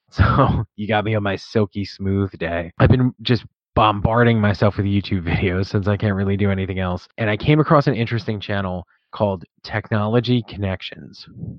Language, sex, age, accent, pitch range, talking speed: English, male, 20-39, American, 100-120 Hz, 175 wpm